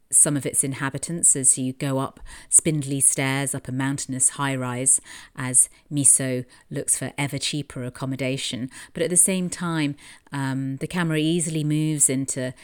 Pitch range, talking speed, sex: 130-155 Hz, 150 wpm, female